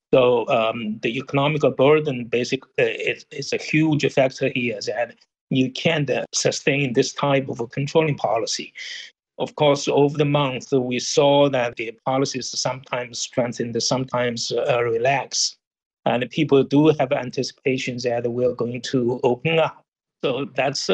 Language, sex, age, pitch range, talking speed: English, male, 60-79, 125-150 Hz, 150 wpm